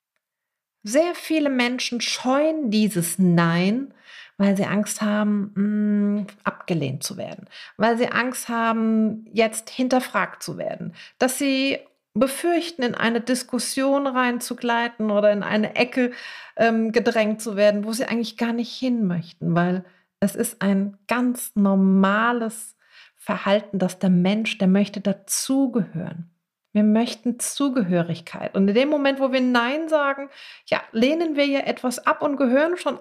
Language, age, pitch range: German, 40-59, 195-255 Hz